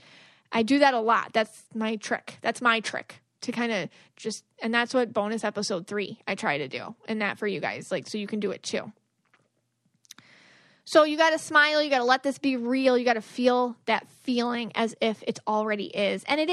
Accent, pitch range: American, 210-250 Hz